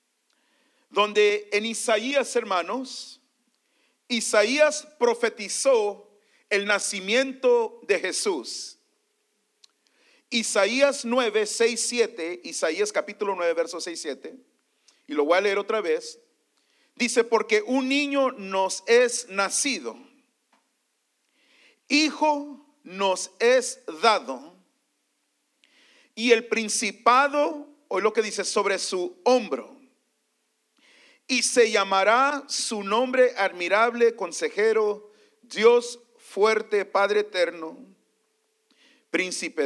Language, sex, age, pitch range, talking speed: English, male, 40-59, 215-280 Hz, 90 wpm